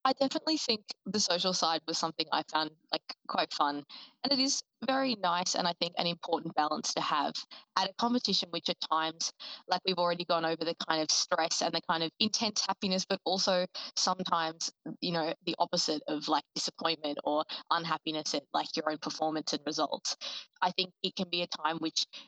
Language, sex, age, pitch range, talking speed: English, female, 20-39, 160-190 Hz, 200 wpm